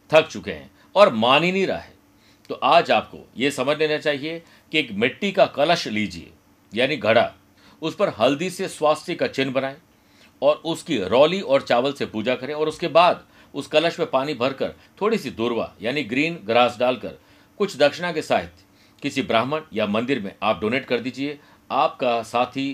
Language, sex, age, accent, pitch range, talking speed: Hindi, male, 50-69, native, 110-155 Hz, 185 wpm